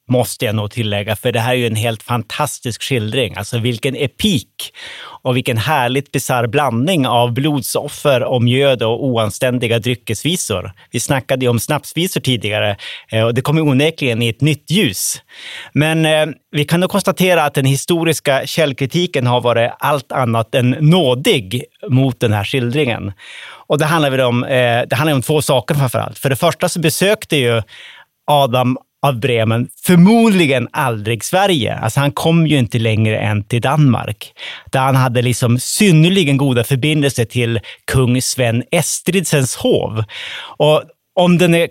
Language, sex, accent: Swedish, male, Norwegian